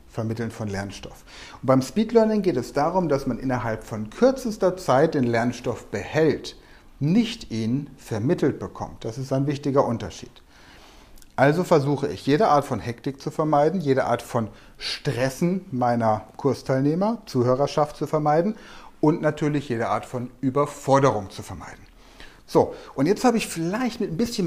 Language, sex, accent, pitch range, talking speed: German, male, German, 120-160 Hz, 155 wpm